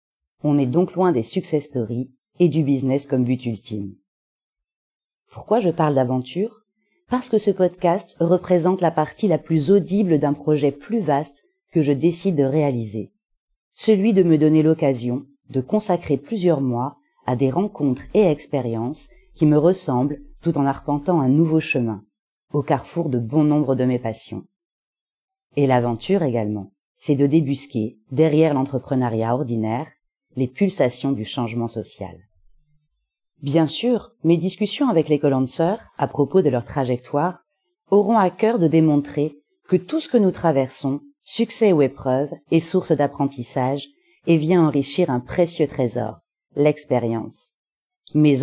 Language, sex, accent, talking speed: French, female, French, 145 wpm